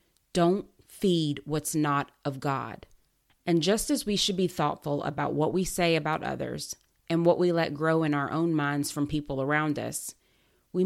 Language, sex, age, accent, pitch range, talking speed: English, female, 30-49, American, 145-185 Hz, 180 wpm